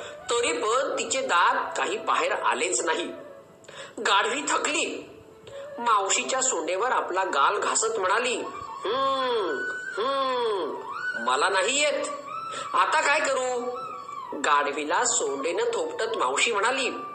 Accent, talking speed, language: native, 55 wpm, Marathi